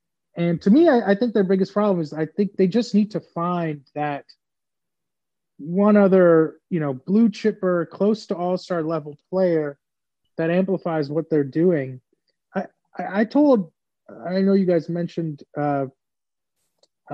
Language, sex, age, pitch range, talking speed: English, male, 30-49, 150-185 Hz, 155 wpm